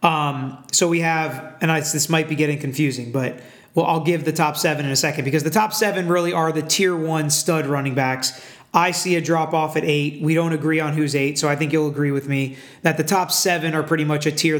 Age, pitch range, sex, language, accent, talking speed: 30-49, 145-165 Hz, male, English, American, 255 wpm